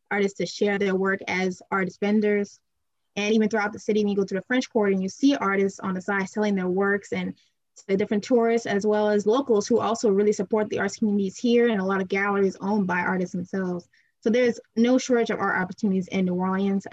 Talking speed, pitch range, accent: 235 wpm, 190-215 Hz, American